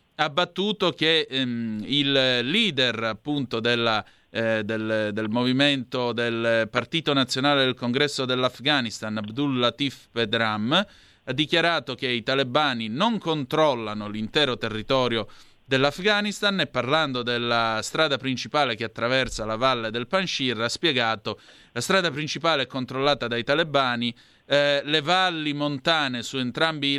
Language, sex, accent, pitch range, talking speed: Italian, male, native, 115-145 Hz, 130 wpm